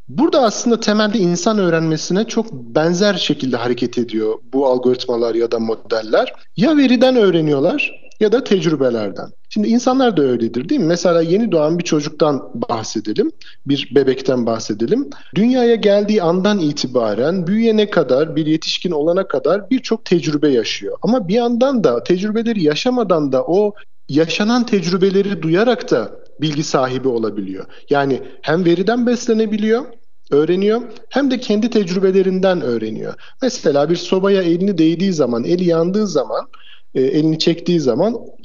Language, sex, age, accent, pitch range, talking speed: Turkish, male, 50-69, native, 145-220 Hz, 135 wpm